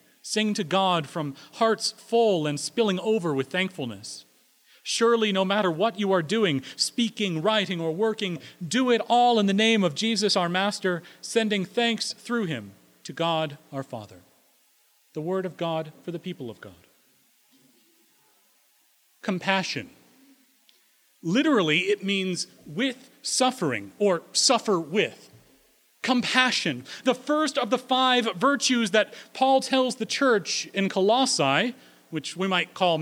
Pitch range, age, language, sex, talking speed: 175-230 Hz, 40-59, English, male, 140 wpm